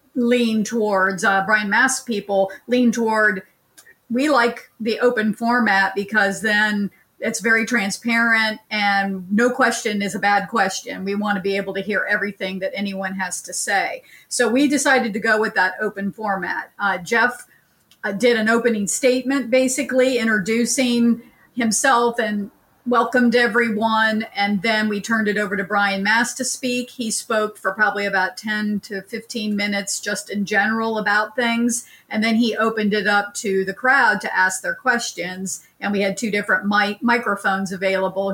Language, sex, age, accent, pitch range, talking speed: English, female, 50-69, American, 195-230 Hz, 165 wpm